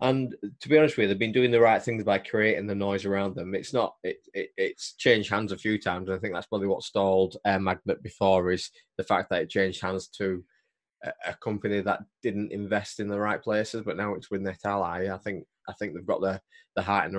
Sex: male